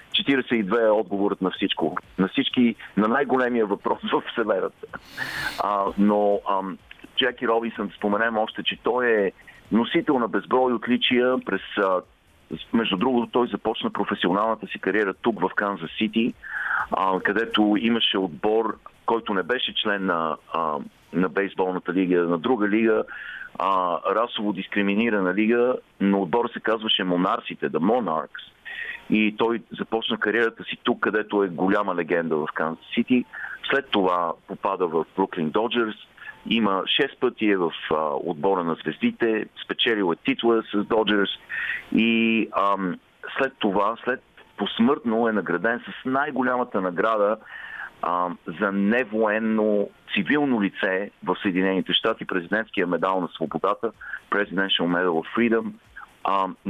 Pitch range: 95-115 Hz